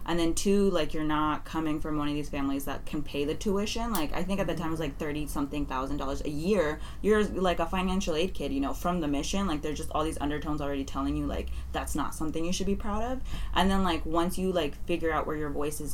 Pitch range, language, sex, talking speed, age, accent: 140-175 Hz, English, female, 275 wpm, 20-39, American